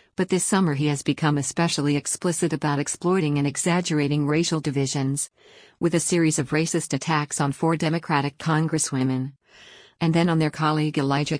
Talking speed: 160 wpm